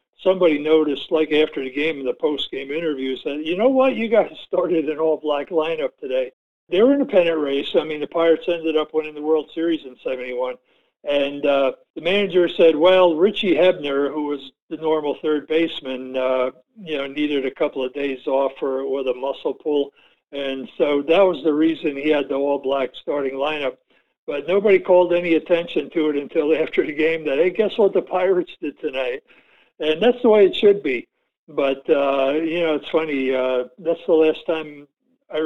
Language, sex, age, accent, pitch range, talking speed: English, male, 60-79, American, 135-170 Hz, 195 wpm